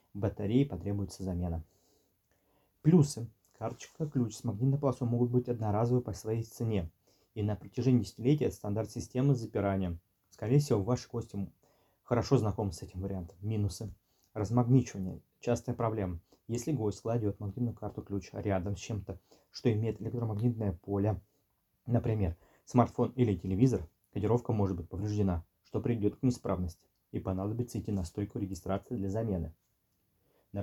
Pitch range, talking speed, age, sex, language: 95-125 Hz, 135 wpm, 20-39, male, Russian